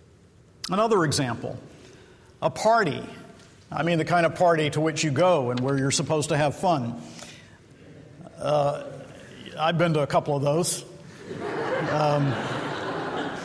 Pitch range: 140-165 Hz